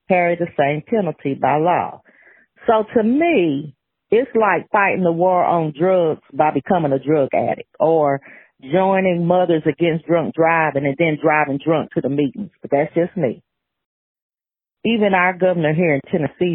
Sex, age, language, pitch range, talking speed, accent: female, 40-59, English, 145-180 Hz, 160 wpm, American